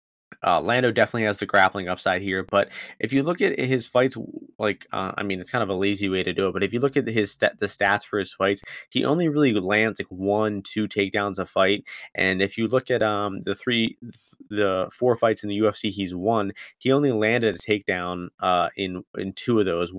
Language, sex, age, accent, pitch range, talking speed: English, male, 20-39, American, 95-110 Hz, 235 wpm